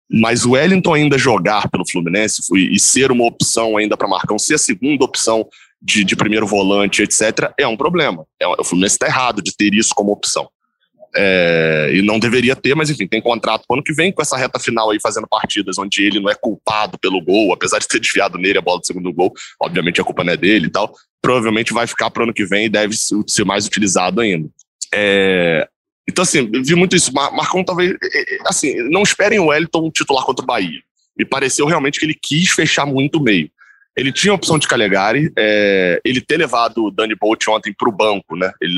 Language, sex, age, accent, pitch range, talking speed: Portuguese, male, 20-39, Brazilian, 105-150 Hz, 215 wpm